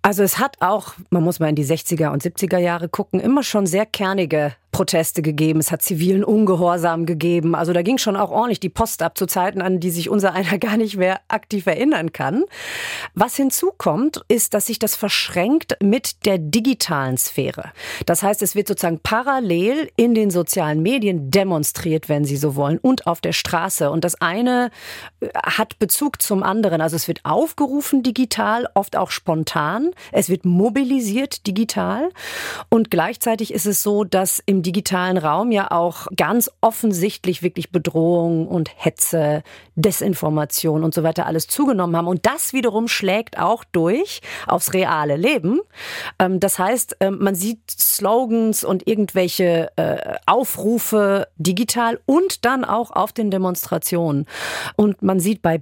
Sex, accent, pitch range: female, German, 170-225 Hz